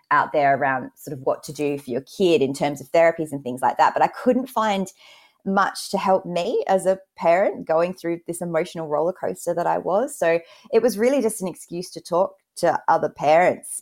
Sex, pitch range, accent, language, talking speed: female, 145-180 Hz, Australian, English, 220 wpm